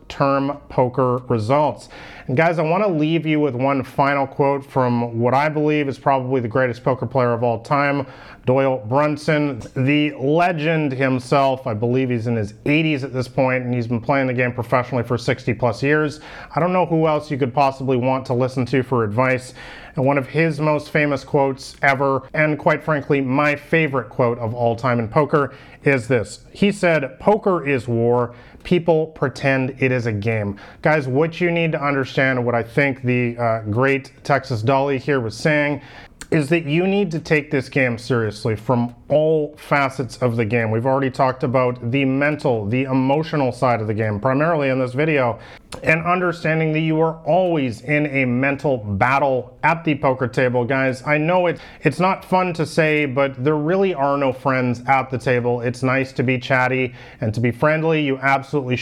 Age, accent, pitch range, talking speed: 30-49, American, 125-150 Hz, 190 wpm